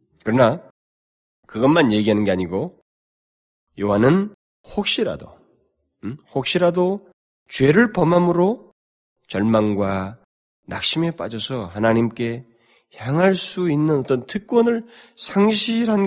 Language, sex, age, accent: Korean, male, 30-49, native